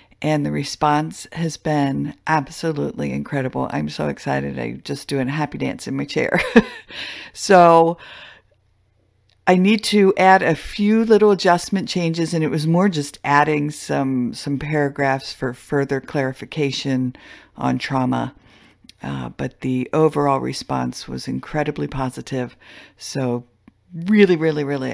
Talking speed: 130 wpm